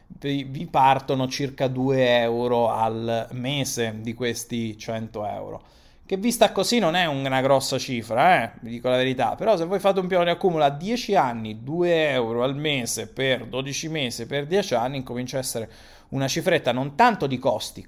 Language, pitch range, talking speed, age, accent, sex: Italian, 115-150 Hz, 180 wpm, 30-49, native, male